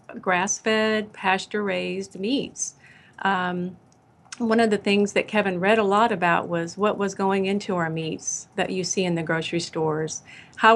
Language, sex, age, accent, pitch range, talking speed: English, female, 40-59, American, 180-210 Hz, 160 wpm